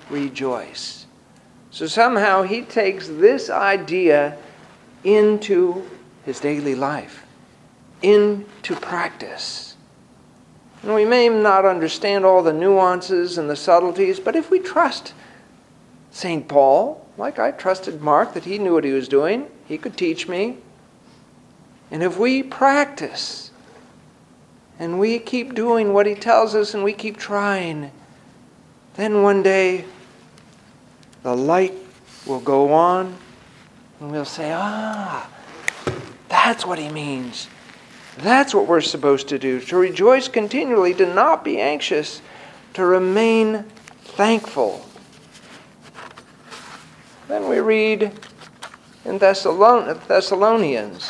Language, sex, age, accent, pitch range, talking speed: English, male, 50-69, American, 165-220 Hz, 115 wpm